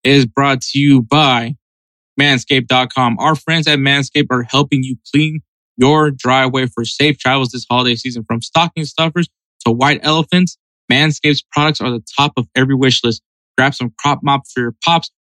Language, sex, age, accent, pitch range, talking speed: English, male, 20-39, American, 125-155 Hz, 175 wpm